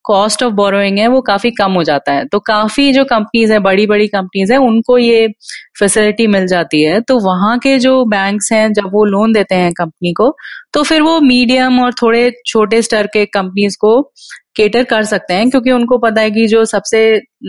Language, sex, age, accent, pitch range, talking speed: Hindi, female, 30-49, native, 180-240 Hz, 205 wpm